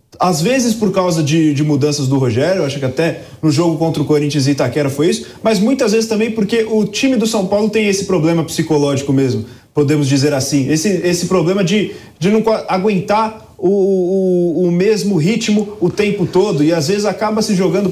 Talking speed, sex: 205 wpm, male